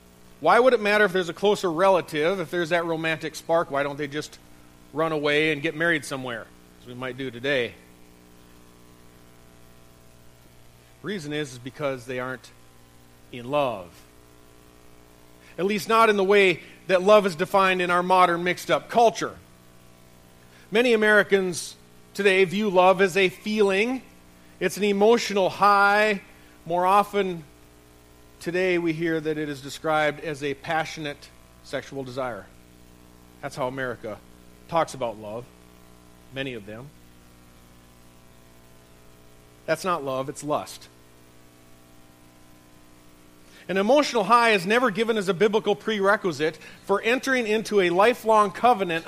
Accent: American